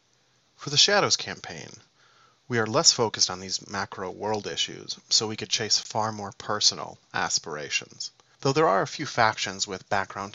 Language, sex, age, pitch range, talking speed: English, male, 30-49, 100-120 Hz, 170 wpm